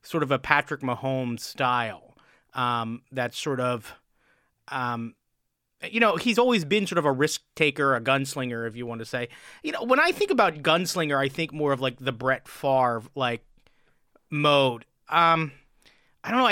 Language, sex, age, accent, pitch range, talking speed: English, male, 30-49, American, 130-165 Hz, 180 wpm